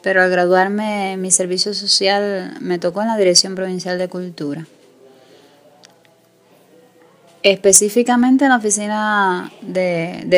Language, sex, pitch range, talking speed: Spanish, female, 175-205 Hz, 115 wpm